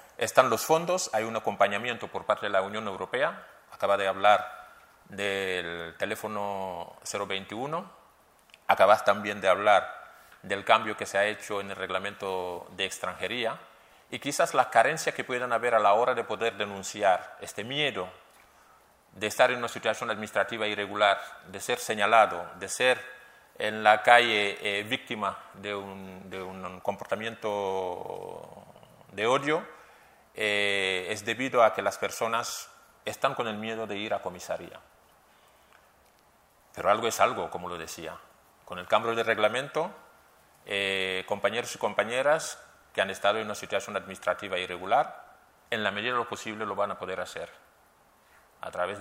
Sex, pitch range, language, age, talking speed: male, 95-110 Hz, Spanish, 30-49, 150 wpm